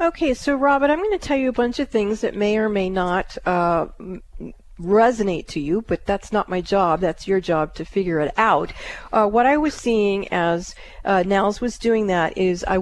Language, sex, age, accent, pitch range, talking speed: English, female, 40-59, American, 185-235 Hz, 215 wpm